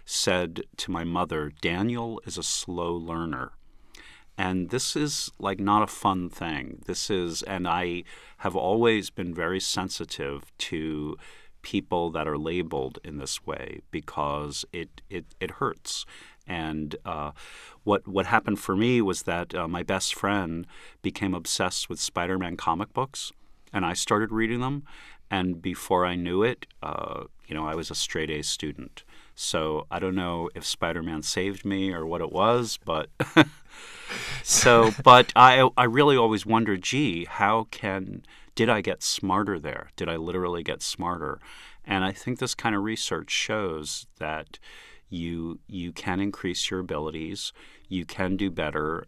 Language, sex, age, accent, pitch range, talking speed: English, male, 50-69, American, 80-105 Hz, 160 wpm